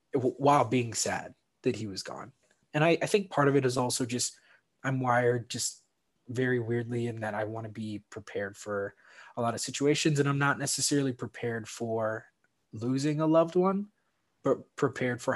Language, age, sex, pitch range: English, 20-39, male, 110-140 Hz